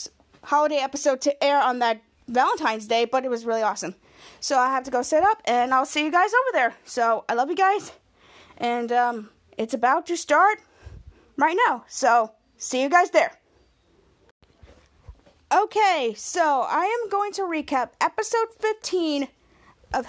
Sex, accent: female, American